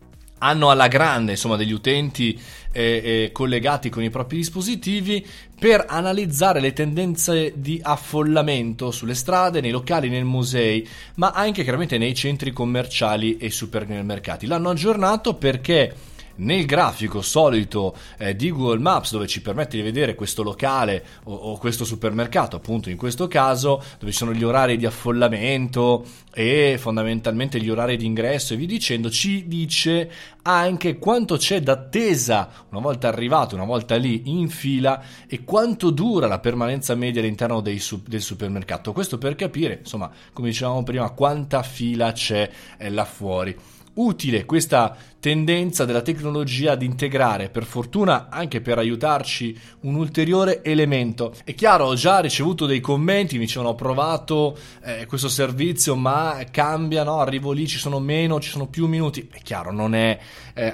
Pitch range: 115-150 Hz